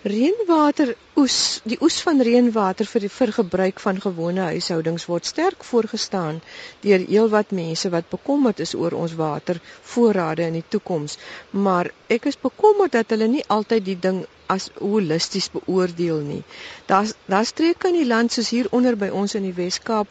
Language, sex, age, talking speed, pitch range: Dutch, female, 50-69, 165 wpm, 185-235 Hz